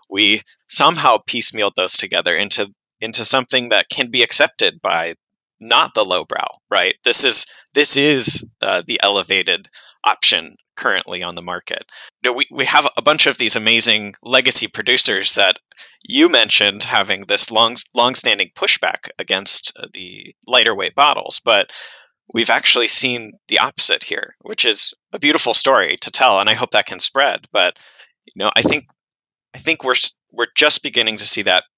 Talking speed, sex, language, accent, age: 170 wpm, male, English, American, 20-39